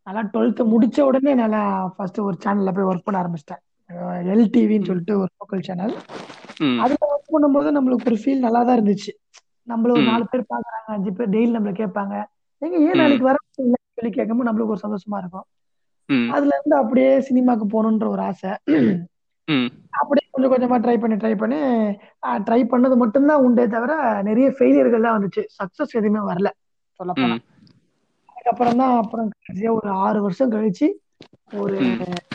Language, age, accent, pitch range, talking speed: Tamil, 20-39, native, 210-275 Hz, 80 wpm